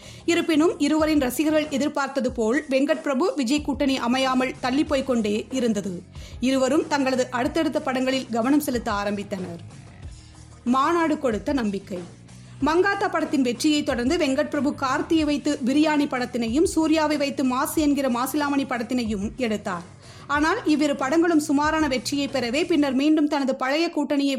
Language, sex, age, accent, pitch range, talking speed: Tamil, female, 30-49, native, 250-300 Hz, 125 wpm